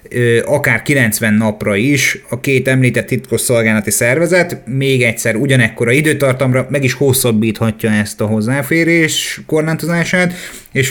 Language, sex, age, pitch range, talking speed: Hungarian, male, 30-49, 110-130 Hz, 125 wpm